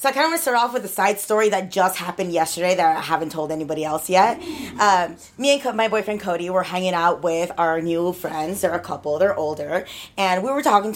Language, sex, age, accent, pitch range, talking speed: English, female, 20-39, American, 185-250 Hz, 245 wpm